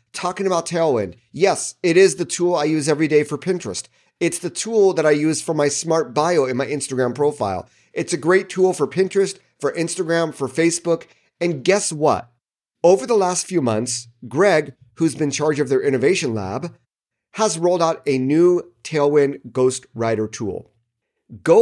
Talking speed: 180 wpm